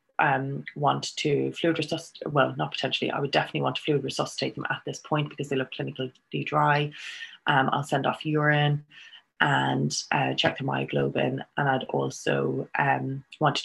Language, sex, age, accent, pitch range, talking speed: English, female, 20-39, Irish, 120-150 Hz, 175 wpm